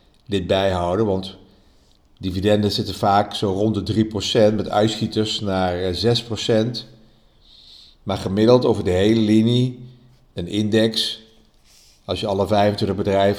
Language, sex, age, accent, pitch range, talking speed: Dutch, male, 50-69, Dutch, 95-125 Hz, 120 wpm